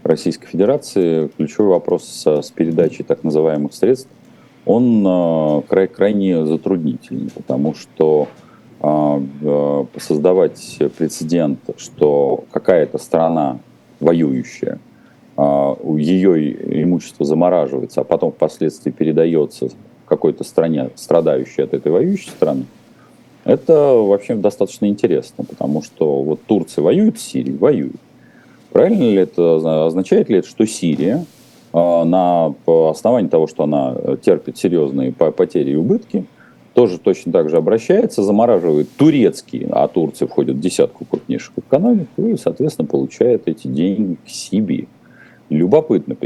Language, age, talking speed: Russian, 40-59, 115 wpm